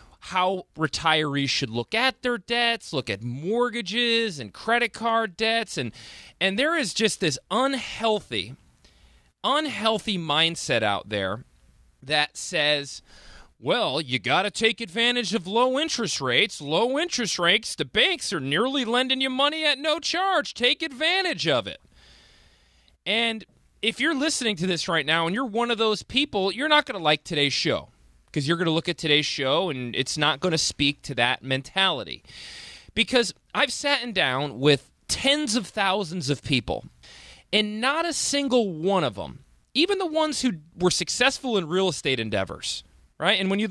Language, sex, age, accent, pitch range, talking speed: English, male, 30-49, American, 150-240 Hz, 170 wpm